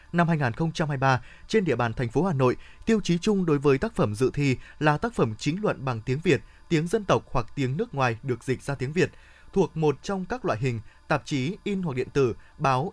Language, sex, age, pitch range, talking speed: Vietnamese, male, 20-39, 130-175 Hz, 235 wpm